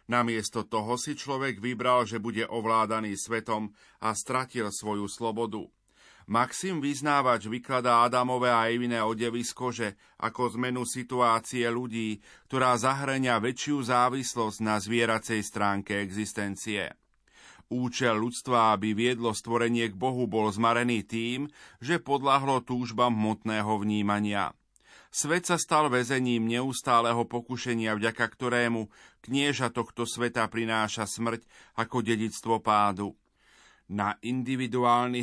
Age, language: 40-59, Slovak